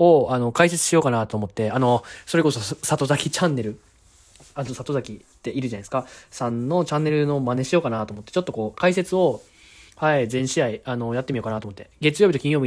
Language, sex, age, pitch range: Japanese, male, 20-39, 115-155 Hz